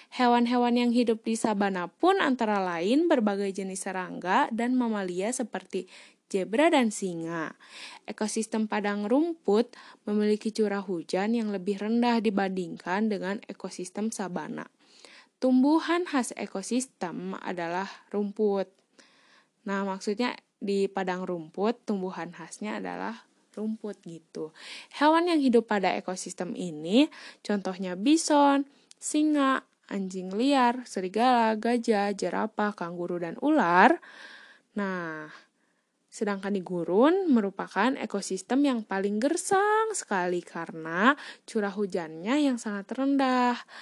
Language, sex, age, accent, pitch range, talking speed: Indonesian, female, 10-29, native, 190-250 Hz, 105 wpm